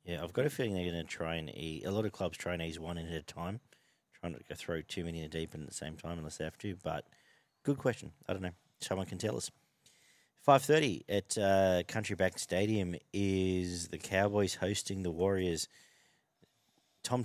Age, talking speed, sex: 40-59, 225 wpm, male